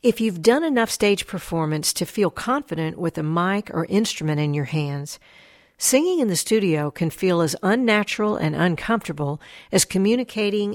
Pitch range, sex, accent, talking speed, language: 155-210 Hz, female, American, 160 wpm, English